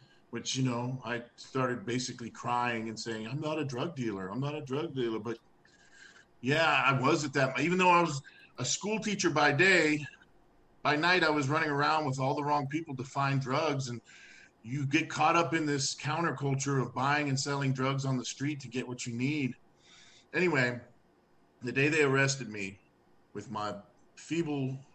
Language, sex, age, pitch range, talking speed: English, male, 40-59, 120-145 Hz, 190 wpm